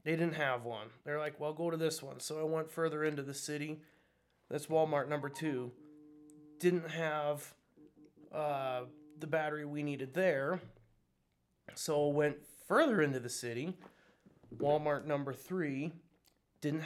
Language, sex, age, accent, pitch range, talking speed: English, male, 20-39, American, 140-175 Hz, 140 wpm